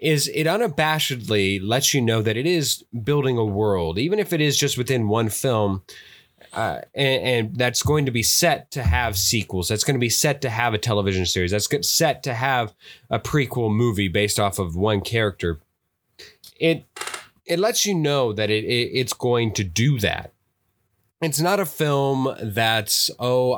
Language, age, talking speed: English, 20-39, 185 wpm